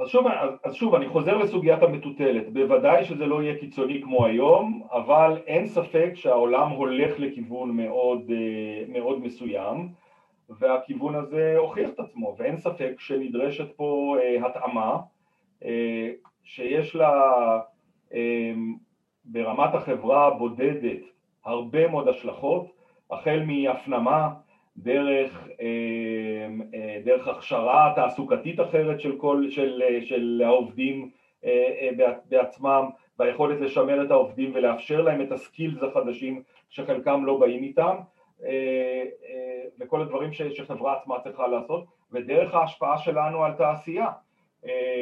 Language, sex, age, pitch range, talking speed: Hebrew, male, 40-59, 125-165 Hz, 110 wpm